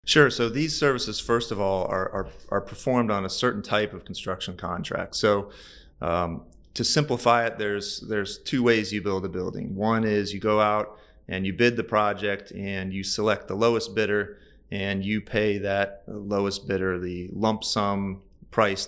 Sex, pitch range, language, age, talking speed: male, 95-110 Hz, English, 30-49, 180 wpm